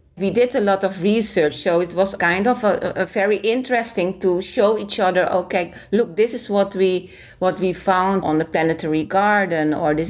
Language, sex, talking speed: English, female, 200 wpm